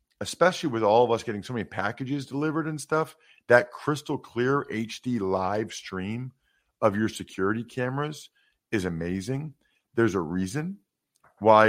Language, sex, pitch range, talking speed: English, male, 100-140 Hz, 145 wpm